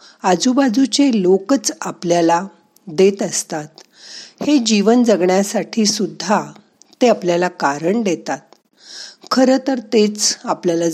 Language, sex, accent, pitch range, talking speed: Marathi, female, native, 180-230 Hz, 95 wpm